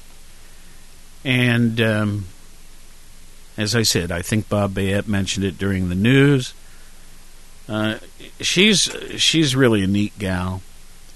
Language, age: English, 60-79